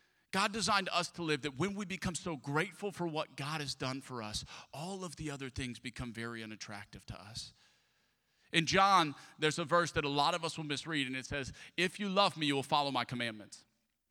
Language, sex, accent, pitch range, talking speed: English, male, American, 120-175 Hz, 220 wpm